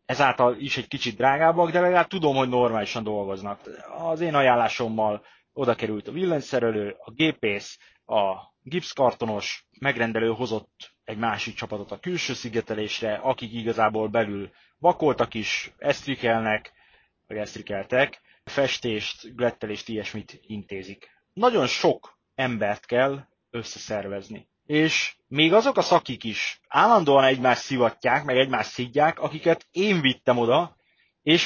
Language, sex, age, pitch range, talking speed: Hungarian, male, 30-49, 110-160 Hz, 120 wpm